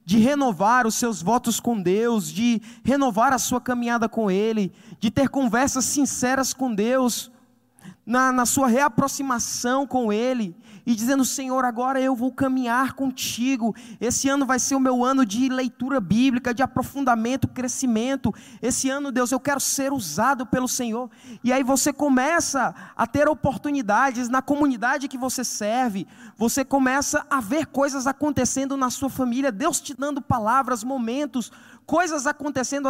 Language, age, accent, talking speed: Portuguese, 20-39, Brazilian, 155 wpm